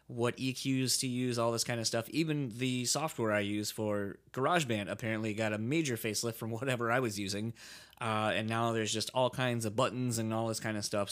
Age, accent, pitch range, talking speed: 20-39, American, 105-130 Hz, 220 wpm